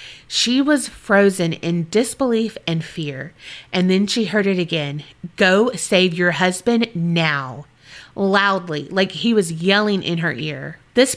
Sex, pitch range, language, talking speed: female, 170-215 Hz, English, 145 wpm